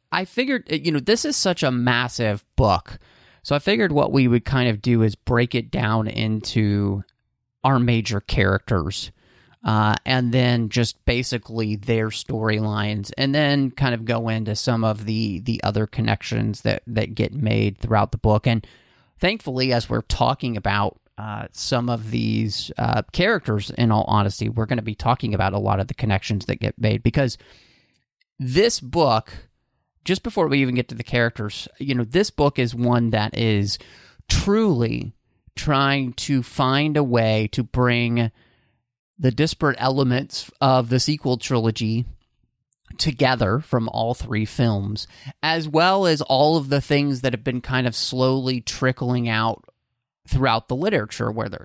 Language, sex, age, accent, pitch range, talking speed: English, male, 30-49, American, 110-135 Hz, 165 wpm